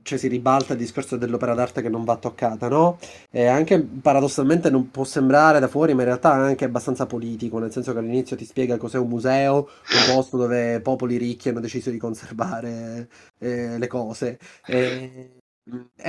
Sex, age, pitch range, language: male, 30-49, 120-155 Hz, Italian